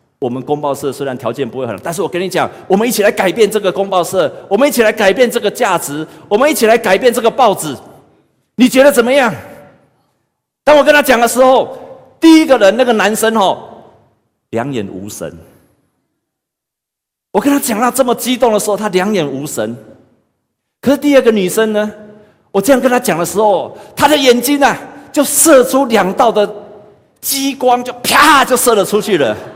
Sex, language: male, Chinese